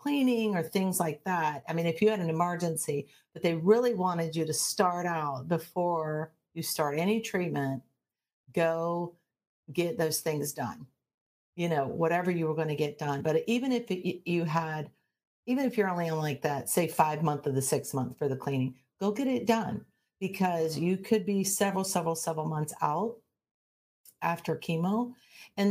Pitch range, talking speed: 155-185 Hz, 175 wpm